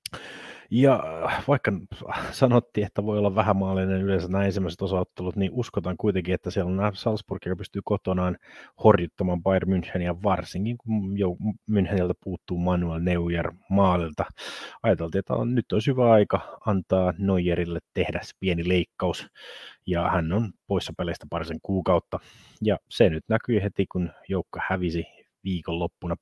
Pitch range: 90-105 Hz